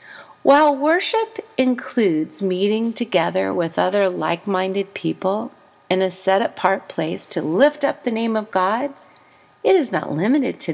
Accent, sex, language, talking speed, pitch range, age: American, female, English, 140 wpm, 185-275 Hz, 40-59